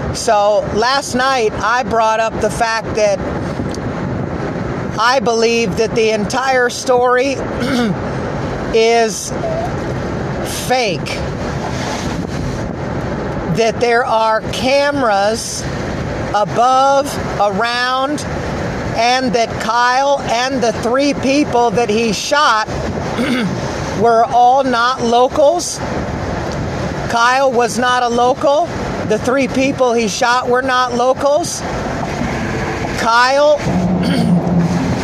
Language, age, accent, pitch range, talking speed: English, 40-59, American, 230-270 Hz, 85 wpm